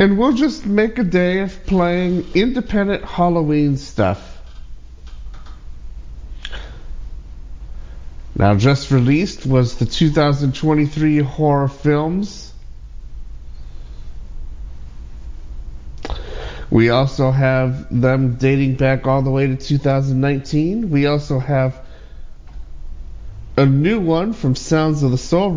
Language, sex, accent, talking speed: English, male, American, 95 wpm